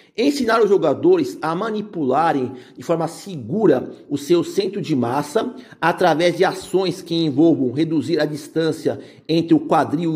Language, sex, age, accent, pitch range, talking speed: Portuguese, male, 50-69, Brazilian, 155-210 Hz, 140 wpm